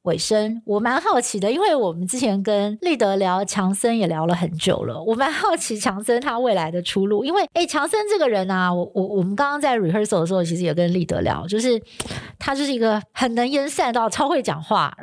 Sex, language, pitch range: female, Chinese, 180-240 Hz